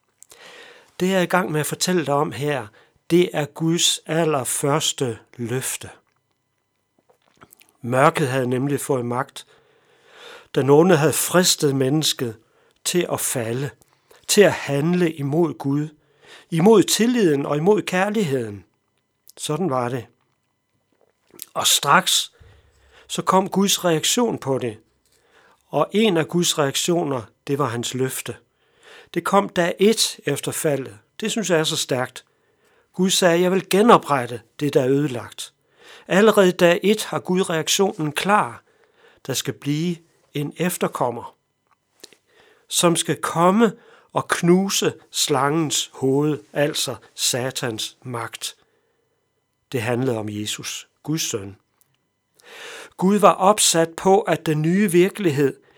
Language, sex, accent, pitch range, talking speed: Danish, male, native, 140-195 Hz, 125 wpm